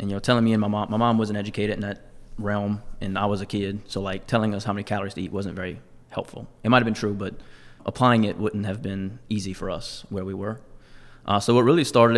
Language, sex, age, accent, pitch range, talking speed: English, male, 20-39, American, 100-115 Hz, 265 wpm